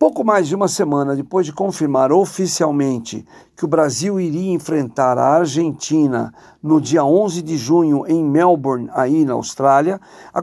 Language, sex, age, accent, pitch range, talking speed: Portuguese, male, 60-79, Brazilian, 145-190 Hz, 155 wpm